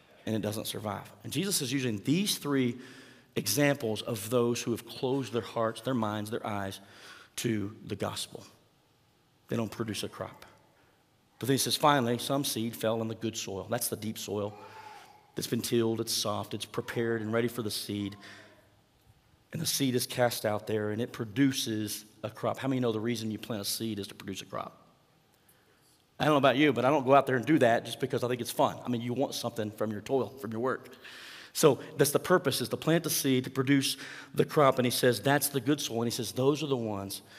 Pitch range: 110-145 Hz